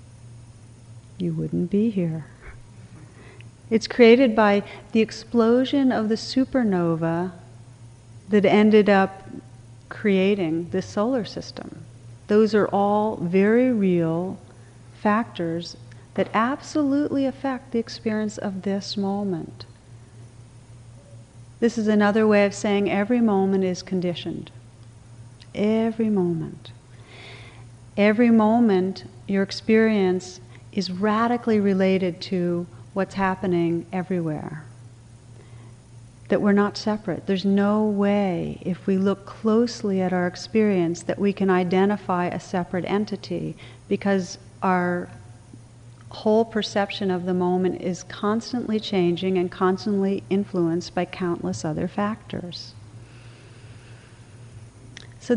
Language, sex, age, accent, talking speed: English, female, 40-59, American, 105 wpm